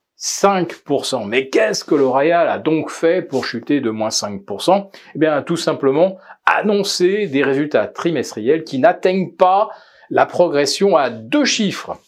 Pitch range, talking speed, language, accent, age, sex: 125-195 Hz, 140 wpm, French, French, 40-59, male